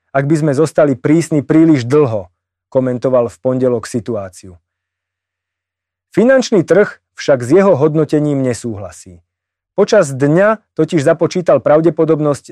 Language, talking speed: Slovak, 110 wpm